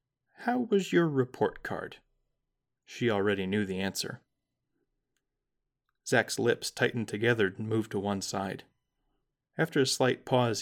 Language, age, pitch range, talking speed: English, 30-49, 110-145 Hz, 130 wpm